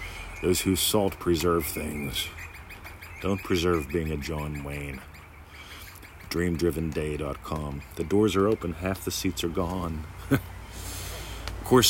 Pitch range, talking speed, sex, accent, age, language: 80-100 Hz, 110 wpm, male, American, 40-59, English